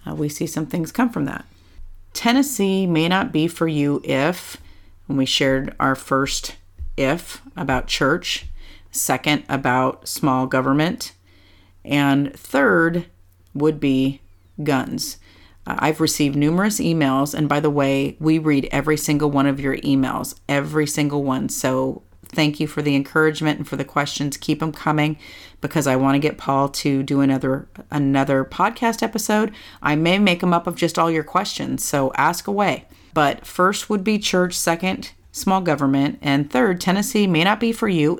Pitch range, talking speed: 135-170 Hz, 165 wpm